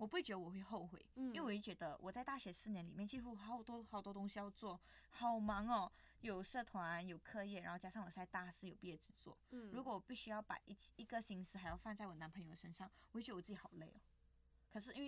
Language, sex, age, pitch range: Chinese, female, 20-39, 175-210 Hz